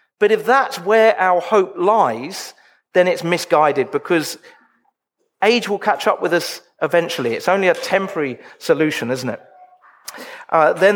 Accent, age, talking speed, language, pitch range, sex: British, 40-59, 150 wpm, English, 160-210 Hz, male